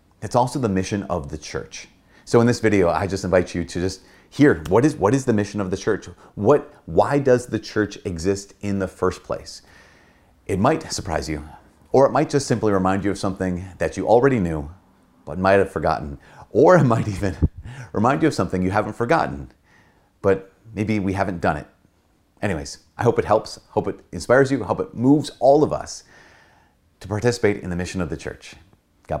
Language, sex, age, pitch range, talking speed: English, male, 30-49, 90-110 Hz, 205 wpm